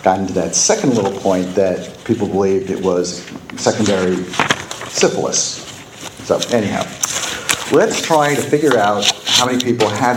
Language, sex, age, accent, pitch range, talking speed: English, male, 50-69, American, 95-130 Hz, 140 wpm